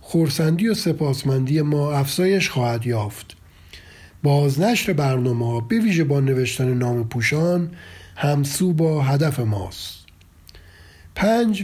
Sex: male